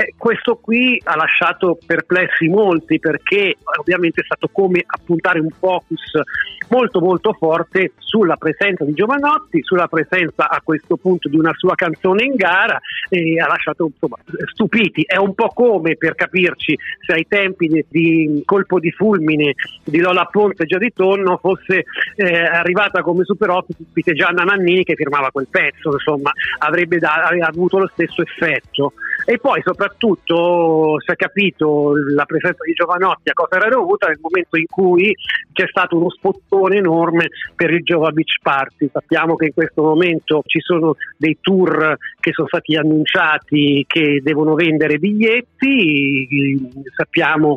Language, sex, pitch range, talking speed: Italian, male, 155-185 Hz, 160 wpm